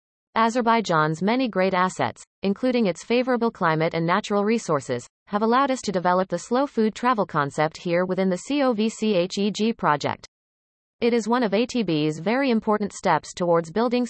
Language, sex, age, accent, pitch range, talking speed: English, female, 30-49, American, 170-230 Hz, 155 wpm